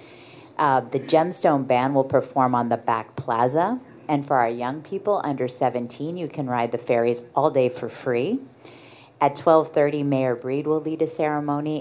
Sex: female